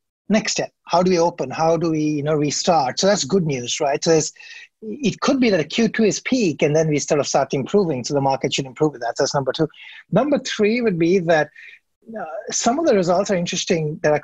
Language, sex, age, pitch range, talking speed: English, male, 30-49, 150-195 Hz, 240 wpm